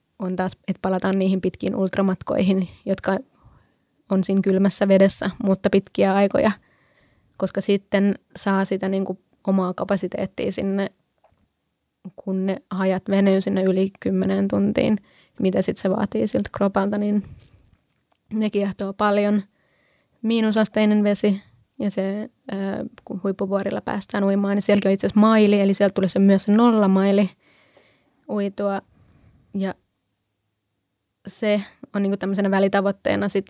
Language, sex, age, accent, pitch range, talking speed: Finnish, female, 20-39, native, 190-205 Hz, 120 wpm